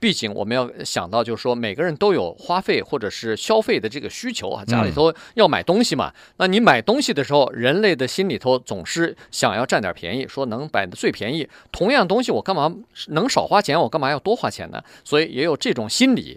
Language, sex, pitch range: Chinese, male, 130-205 Hz